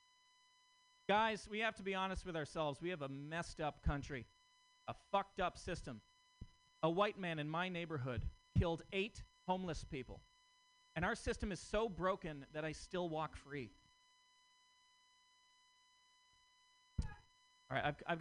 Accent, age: American, 40-59